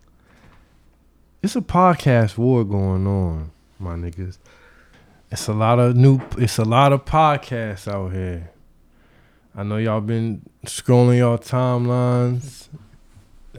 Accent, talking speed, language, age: American, 115 wpm, English, 20-39